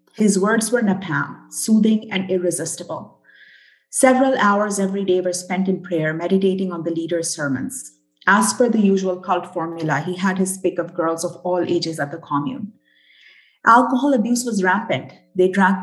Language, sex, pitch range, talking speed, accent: English, female, 170-215 Hz, 165 wpm, Indian